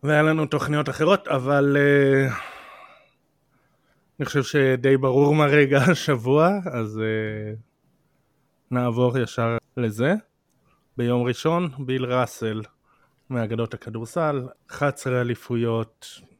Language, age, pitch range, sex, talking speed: Hebrew, 20-39, 115-140 Hz, male, 90 wpm